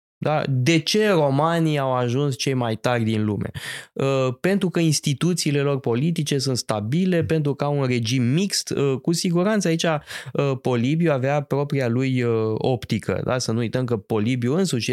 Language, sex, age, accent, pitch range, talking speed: Romanian, male, 20-39, native, 115-155 Hz, 175 wpm